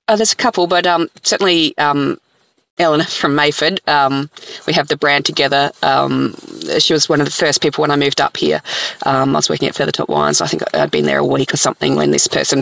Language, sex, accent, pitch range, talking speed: English, female, Australian, 140-170 Hz, 235 wpm